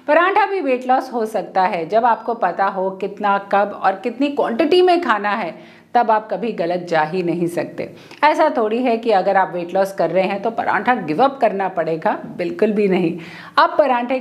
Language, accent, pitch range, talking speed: Hindi, native, 190-255 Hz, 205 wpm